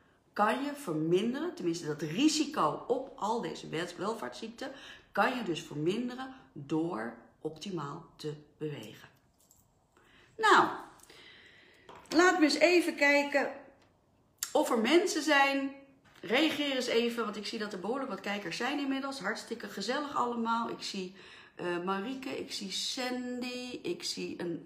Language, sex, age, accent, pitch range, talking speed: Dutch, female, 40-59, Dutch, 170-270 Hz, 130 wpm